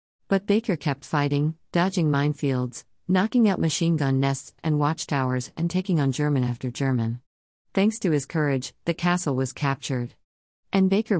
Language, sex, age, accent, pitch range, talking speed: English, female, 50-69, American, 130-170 Hz, 150 wpm